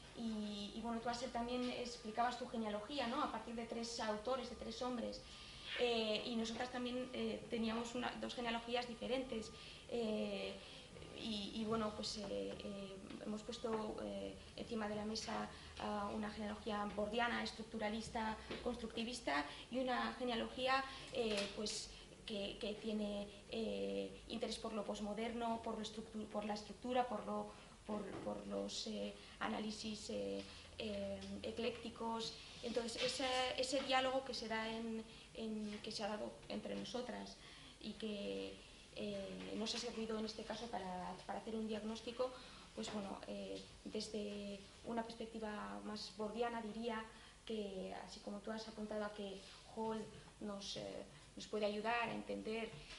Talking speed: 140 wpm